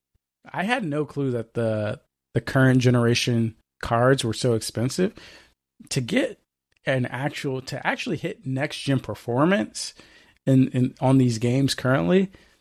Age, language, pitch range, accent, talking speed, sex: 20-39, English, 105-130 Hz, American, 140 wpm, male